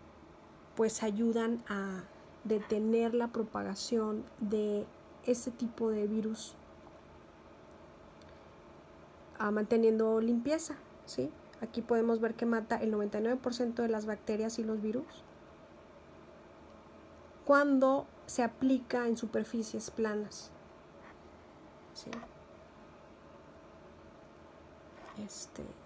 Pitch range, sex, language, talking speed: 215-255 Hz, female, English, 85 wpm